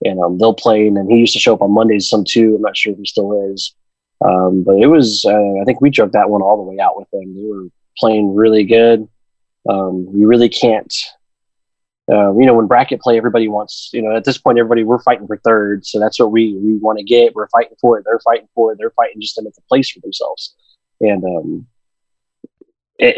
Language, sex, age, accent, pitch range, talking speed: English, male, 20-39, American, 105-120 Hz, 245 wpm